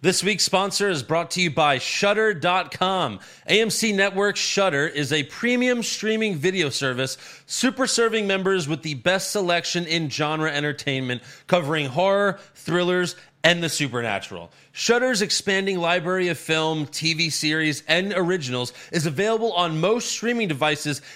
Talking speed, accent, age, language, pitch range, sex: 135 wpm, American, 30-49, English, 140-190 Hz, male